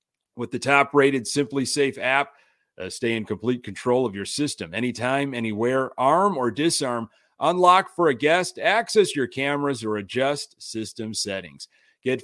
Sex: male